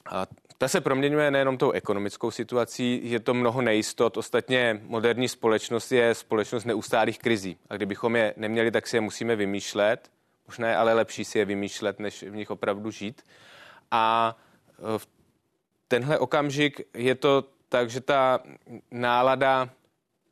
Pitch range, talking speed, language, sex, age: 105-120 Hz, 150 wpm, Czech, male, 30-49